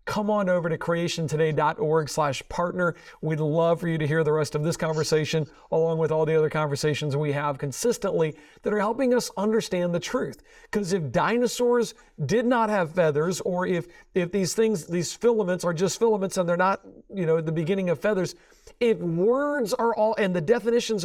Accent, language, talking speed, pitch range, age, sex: American, English, 190 wpm, 155-200 Hz, 50-69, male